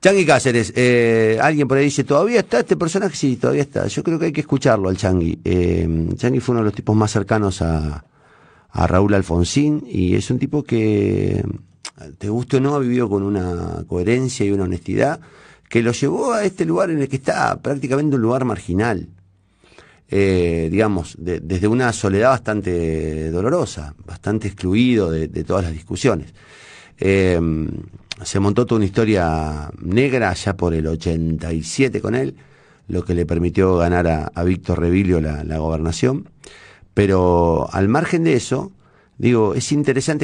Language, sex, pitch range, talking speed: Spanish, male, 90-130 Hz, 170 wpm